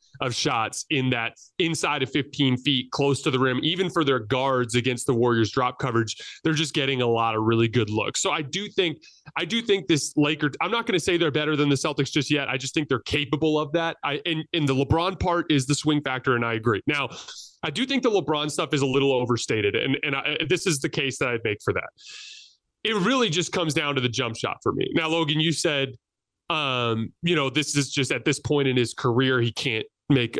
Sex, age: male, 30-49